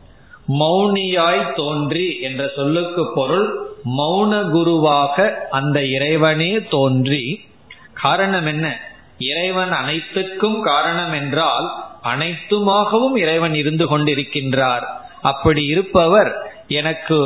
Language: Tamil